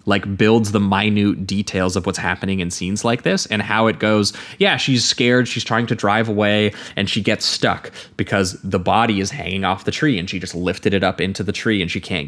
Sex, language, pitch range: male, English, 95-115 Hz